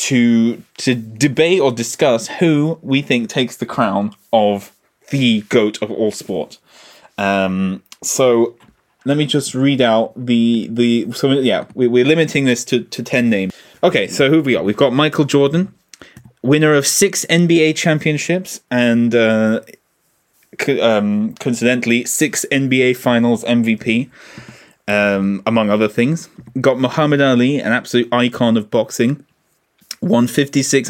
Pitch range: 115-150 Hz